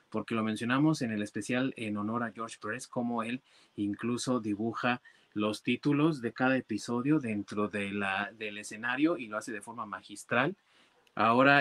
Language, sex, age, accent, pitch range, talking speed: Spanish, male, 30-49, Mexican, 115-150 Hz, 165 wpm